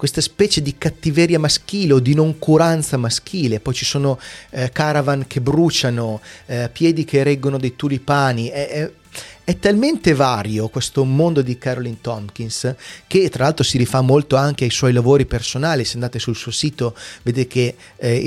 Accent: native